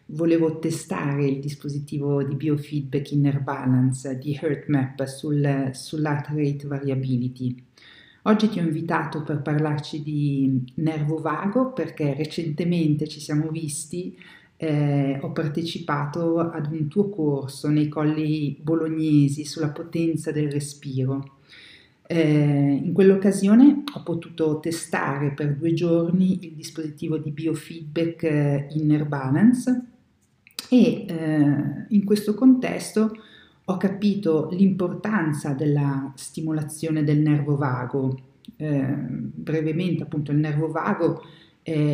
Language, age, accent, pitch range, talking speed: Italian, 50-69, native, 145-170 Hz, 110 wpm